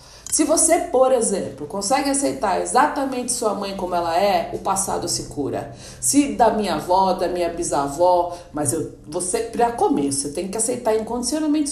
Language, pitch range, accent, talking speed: Portuguese, 170-225 Hz, Brazilian, 170 wpm